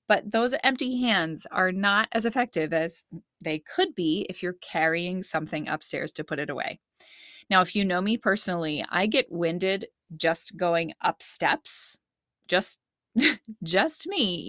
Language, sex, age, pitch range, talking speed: English, female, 20-39, 170-230 Hz, 155 wpm